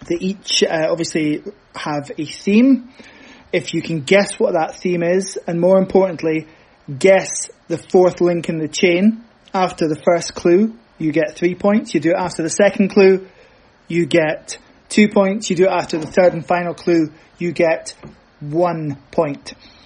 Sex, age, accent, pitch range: male, 20-39, British, 165-200 Hz